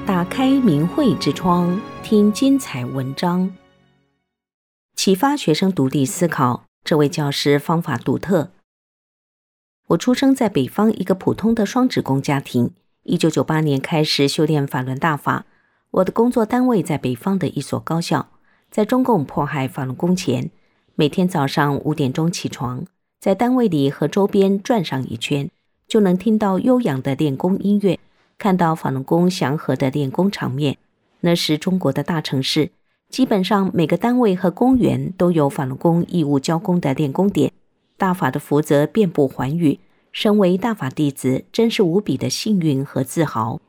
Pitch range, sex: 140-195 Hz, female